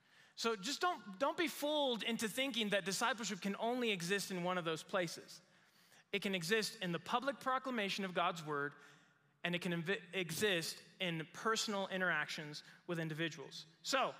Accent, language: American, English